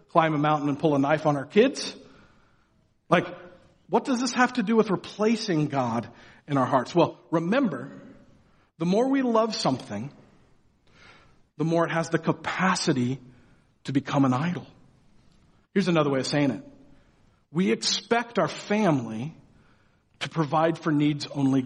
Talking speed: 150 wpm